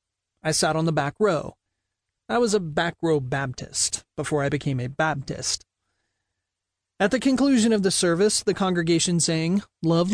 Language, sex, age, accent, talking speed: English, male, 30-49, American, 160 wpm